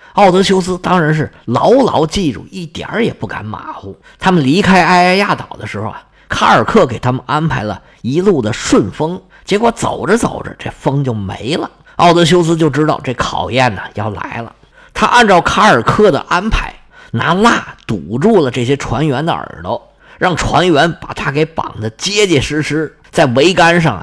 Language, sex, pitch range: Chinese, male, 125-185 Hz